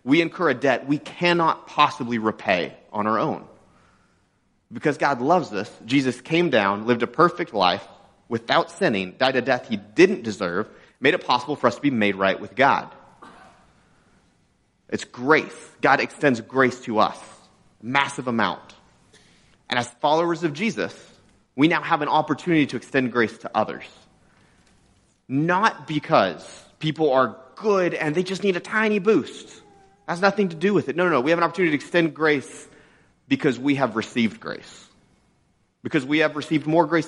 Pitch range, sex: 125-165 Hz, male